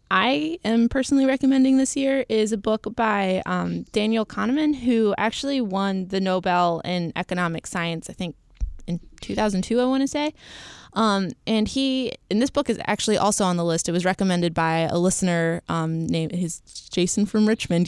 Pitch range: 175-225 Hz